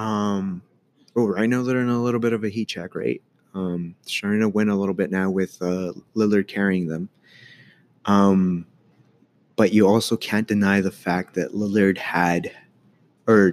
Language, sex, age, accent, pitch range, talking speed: English, male, 20-39, American, 95-105 Hz, 175 wpm